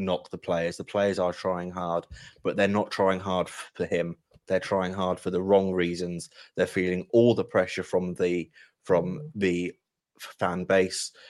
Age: 20-39